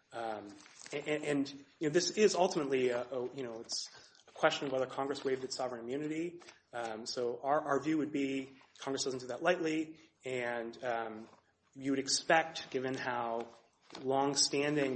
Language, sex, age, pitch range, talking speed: English, male, 30-49, 120-140 Hz, 170 wpm